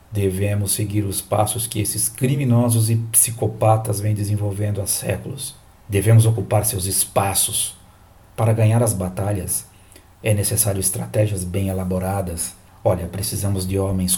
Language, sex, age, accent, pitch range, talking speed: Portuguese, male, 50-69, Brazilian, 100-115 Hz, 125 wpm